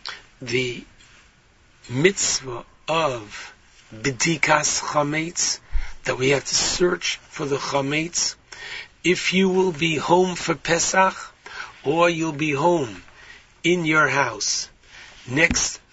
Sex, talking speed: male, 105 wpm